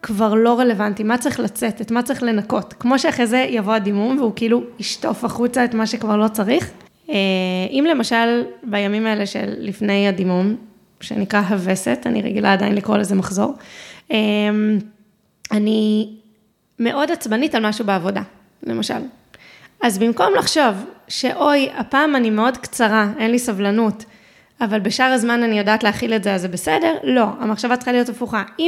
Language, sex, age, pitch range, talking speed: Hebrew, female, 20-39, 210-255 Hz, 140 wpm